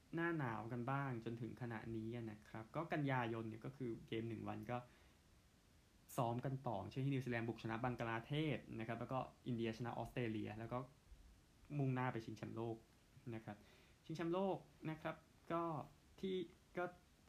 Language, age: Thai, 20-39